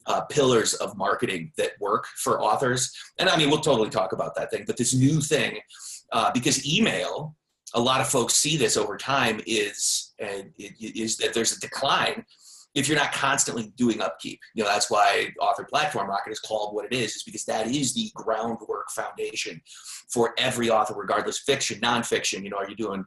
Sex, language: male, English